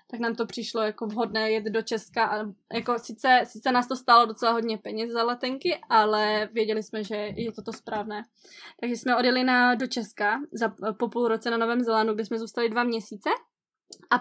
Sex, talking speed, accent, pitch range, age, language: female, 200 wpm, native, 215-240 Hz, 20-39, Czech